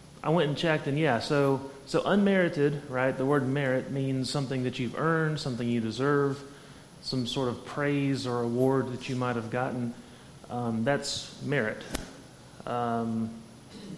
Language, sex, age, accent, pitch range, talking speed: English, male, 30-49, American, 120-145 Hz, 155 wpm